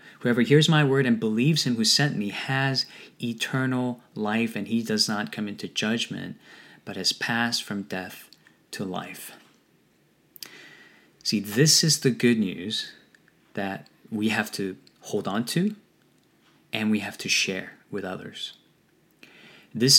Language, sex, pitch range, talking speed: English, male, 105-150 Hz, 145 wpm